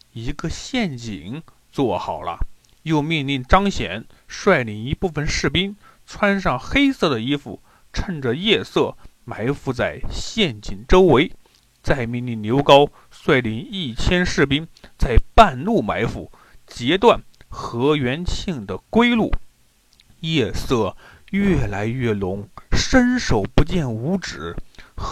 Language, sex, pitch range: Chinese, male, 125-200 Hz